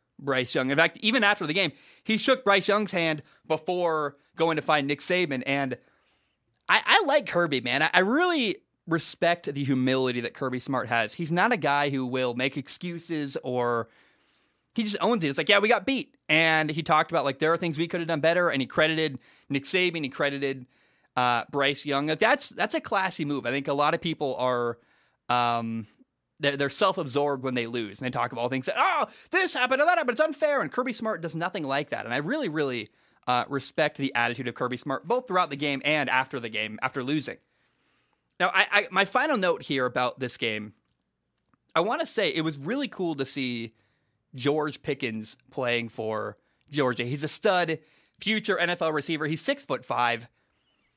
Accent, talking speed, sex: American, 205 wpm, male